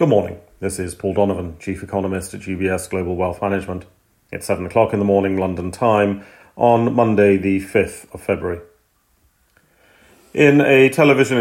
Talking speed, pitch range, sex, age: 160 wpm, 95-120 Hz, male, 40-59